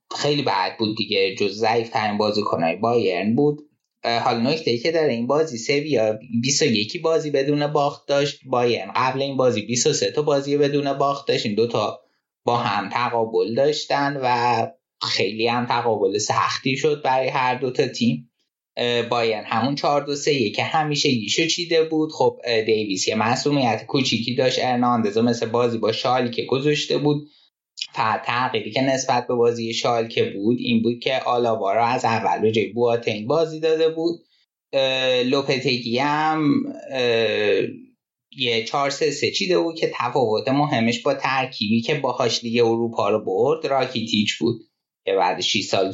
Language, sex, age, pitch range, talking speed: Persian, male, 20-39, 115-150 Hz, 150 wpm